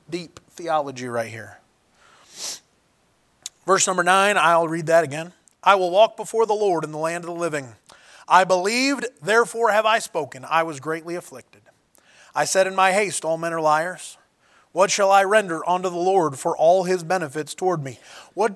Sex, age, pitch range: male, 30-49, 160-200 Hz